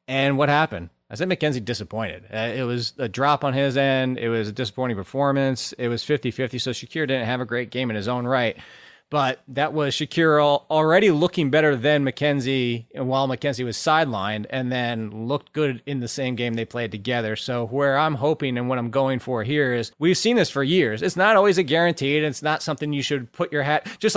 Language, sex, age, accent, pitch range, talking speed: English, male, 20-39, American, 120-150 Hz, 225 wpm